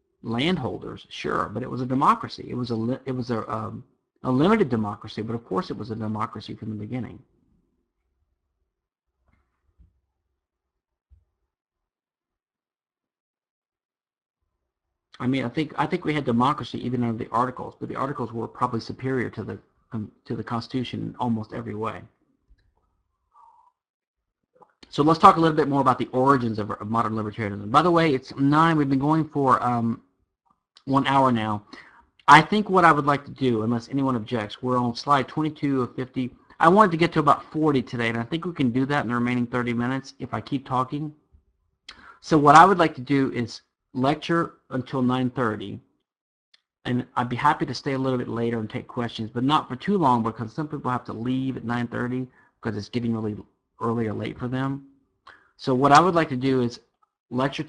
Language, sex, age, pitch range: English, male, 50-69, 115-140 Hz